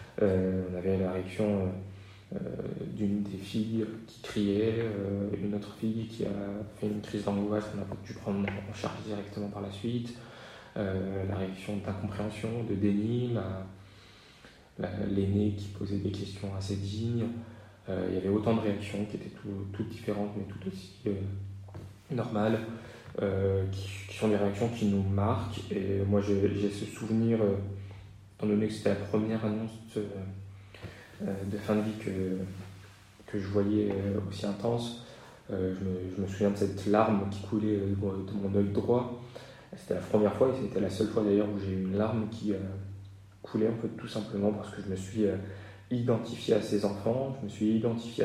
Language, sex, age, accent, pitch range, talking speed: French, male, 20-39, French, 100-110 Hz, 185 wpm